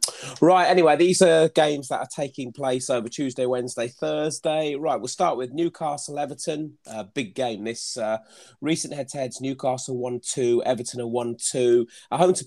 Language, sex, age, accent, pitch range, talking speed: English, male, 30-49, British, 115-145 Hz, 180 wpm